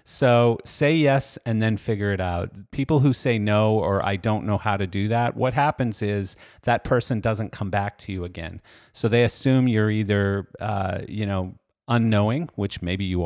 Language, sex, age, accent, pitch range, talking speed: English, male, 40-59, American, 100-115 Hz, 195 wpm